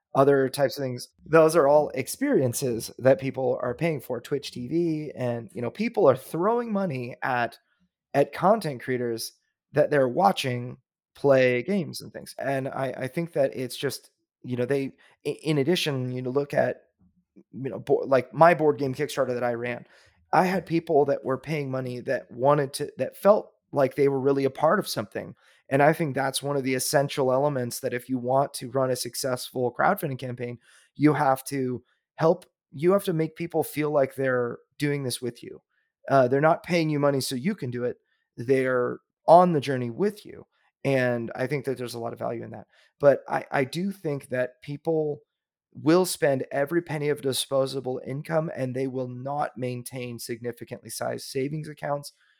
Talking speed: 190 wpm